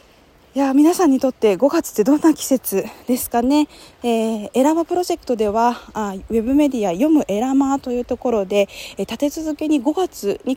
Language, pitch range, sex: Japanese, 215-290 Hz, female